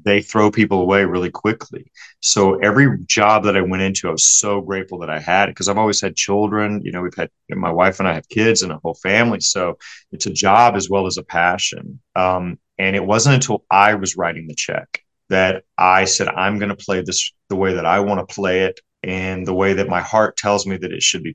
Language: English